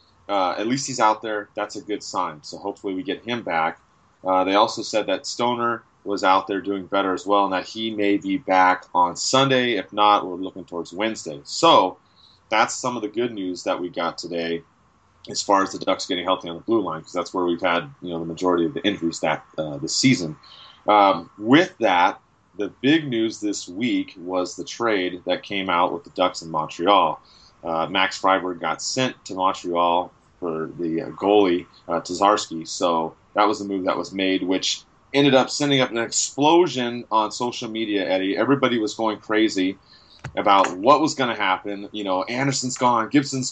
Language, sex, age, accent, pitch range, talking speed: English, male, 30-49, American, 90-120 Hz, 200 wpm